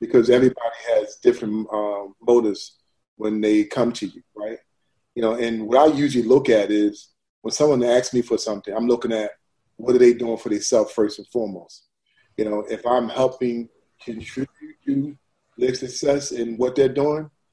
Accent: American